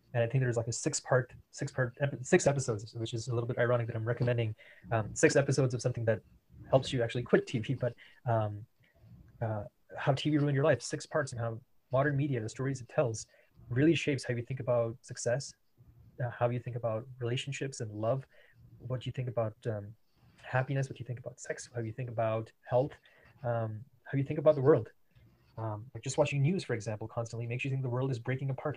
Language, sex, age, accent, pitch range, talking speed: English, male, 20-39, Canadian, 115-140 Hz, 215 wpm